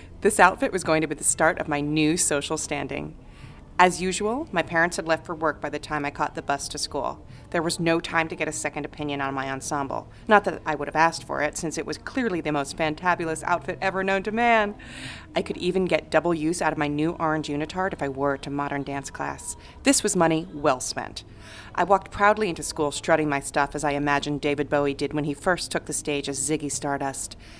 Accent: American